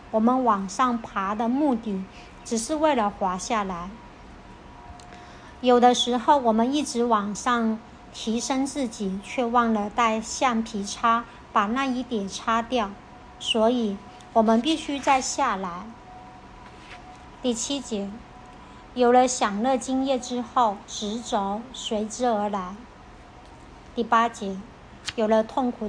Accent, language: American, Chinese